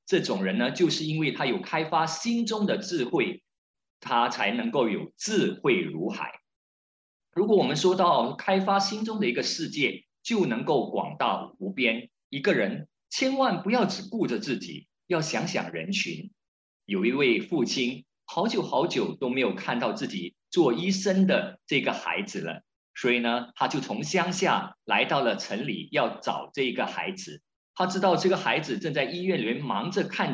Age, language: 50-69, Chinese